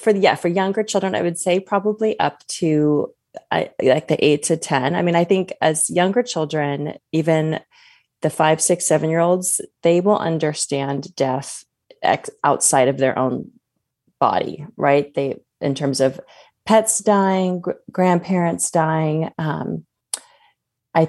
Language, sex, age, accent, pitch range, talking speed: English, female, 30-49, American, 150-190 Hz, 150 wpm